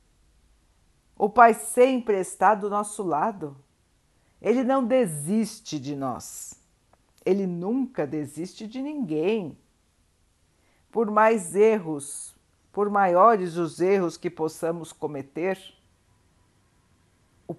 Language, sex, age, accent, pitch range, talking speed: Portuguese, female, 50-69, Brazilian, 130-215 Hz, 95 wpm